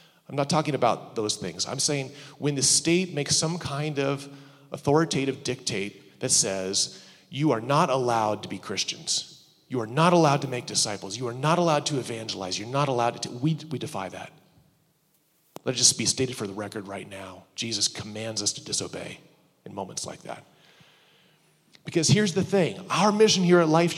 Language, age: English, 30-49